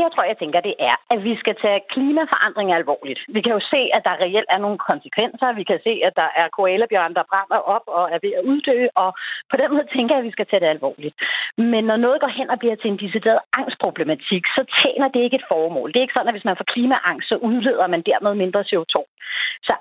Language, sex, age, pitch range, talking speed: Danish, female, 40-59, 200-270 Hz, 250 wpm